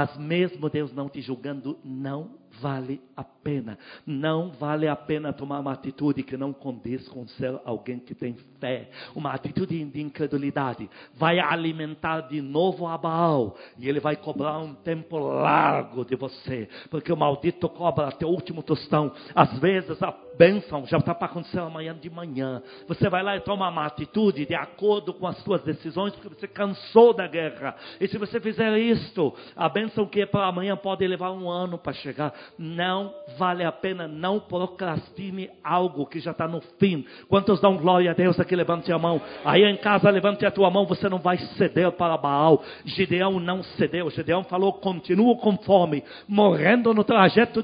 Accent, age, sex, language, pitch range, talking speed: Brazilian, 50-69, male, Portuguese, 145-190 Hz, 185 wpm